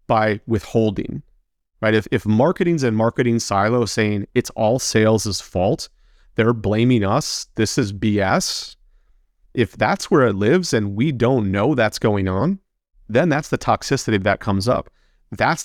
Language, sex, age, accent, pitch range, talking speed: English, male, 30-49, American, 105-125 Hz, 155 wpm